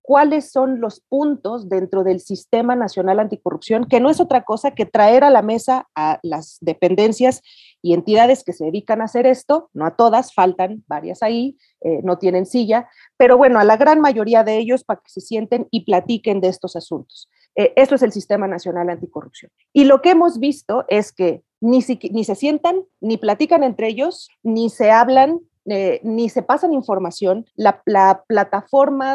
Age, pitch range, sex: 40-59, 190-260 Hz, female